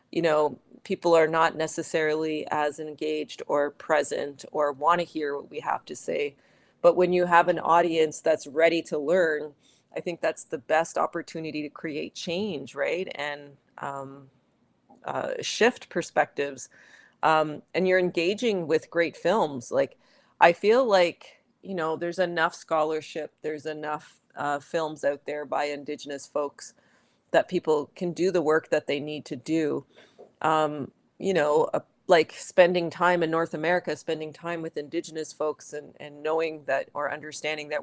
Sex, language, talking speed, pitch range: female, German, 160 wpm, 150-170 Hz